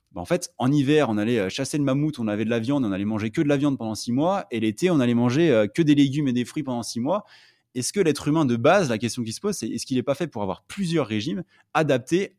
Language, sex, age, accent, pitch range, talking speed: French, male, 20-39, French, 100-135 Hz, 290 wpm